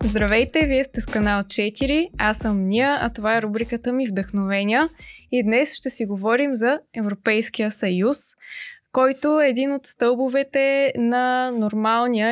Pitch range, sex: 210-255 Hz, female